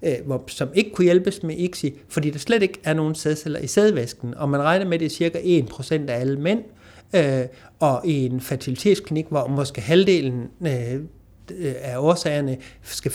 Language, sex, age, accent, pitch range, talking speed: Danish, male, 60-79, native, 130-165 Hz, 165 wpm